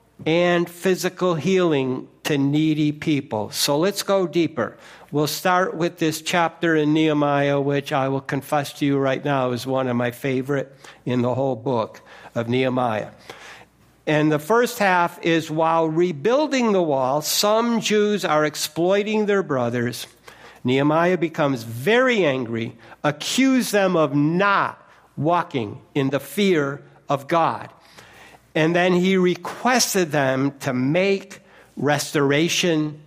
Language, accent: English, American